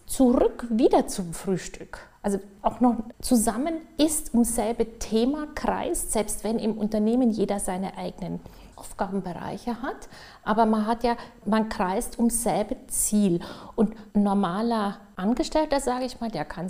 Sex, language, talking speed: female, German, 140 wpm